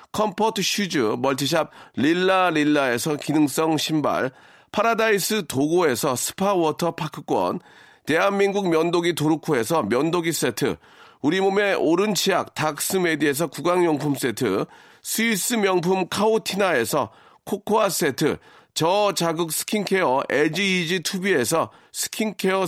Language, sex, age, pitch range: Korean, male, 40-59, 155-200 Hz